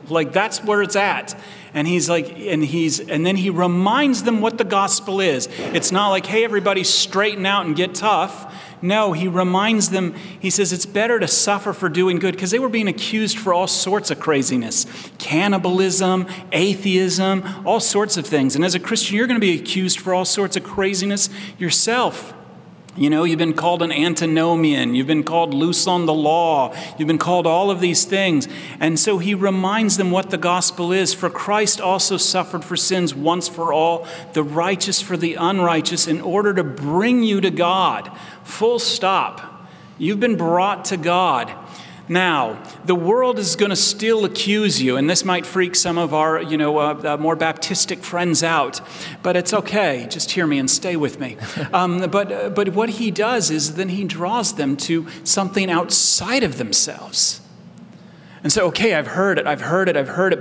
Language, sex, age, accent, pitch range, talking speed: English, male, 40-59, American, 165-200 Hz, 195 wpm